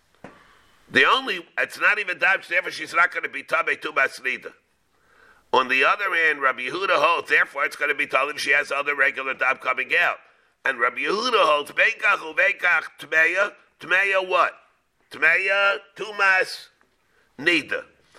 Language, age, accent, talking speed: English, 50-69, American, 140 wpm